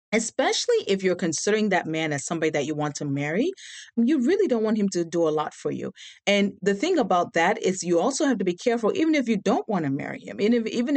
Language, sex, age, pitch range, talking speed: English, female, 40-59, 170-225 Hz, 245 wpm